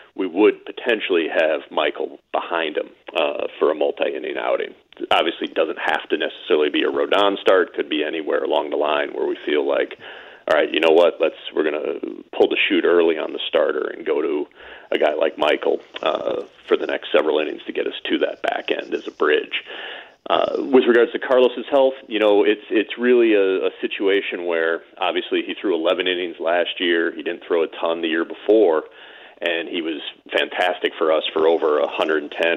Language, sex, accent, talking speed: English, male, American, 205 wpm